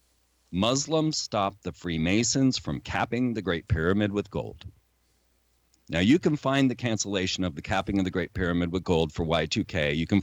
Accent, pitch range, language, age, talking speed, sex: American, 85-110 Hz, English, 40-59, 175 wpm, male